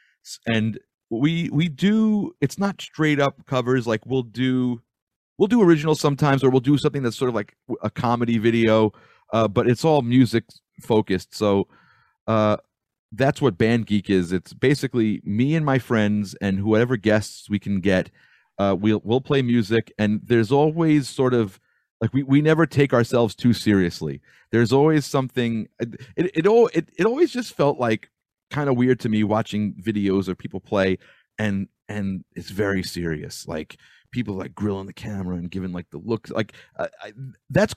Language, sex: English, male